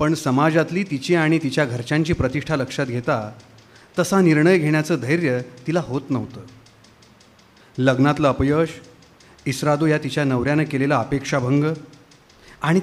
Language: Marathi